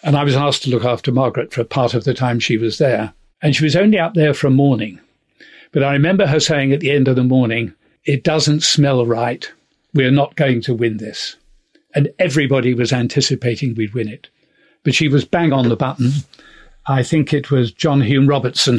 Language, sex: English, male